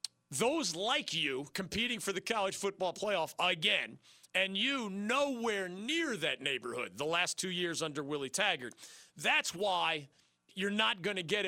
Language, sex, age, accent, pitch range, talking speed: English, male, 40-59, American, 150-185 Hz, 155 wpm